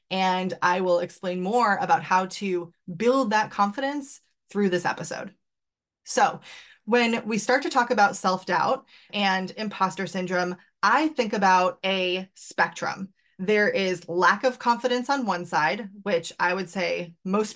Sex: female